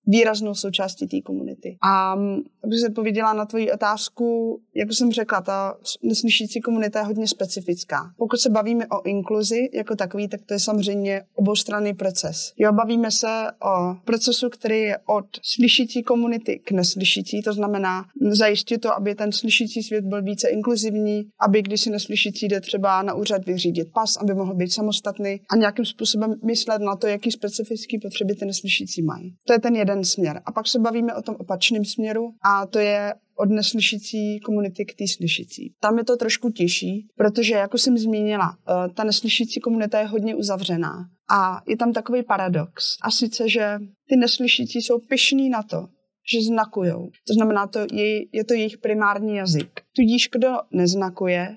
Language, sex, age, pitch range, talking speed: Czech, female, 20-39, 200-230 Hz, 170 wpm